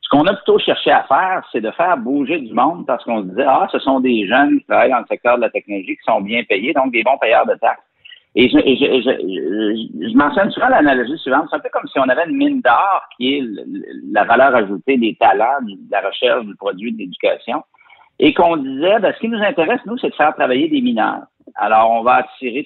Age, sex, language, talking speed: 60-79, male, French, 265 wpm